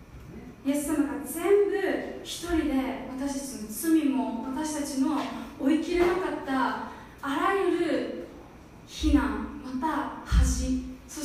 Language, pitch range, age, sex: Japanese, 255-300 Hz, 20-39, female